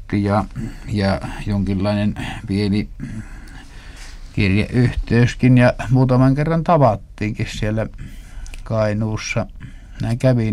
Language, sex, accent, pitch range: Finnish, male, native, 95-115 Hz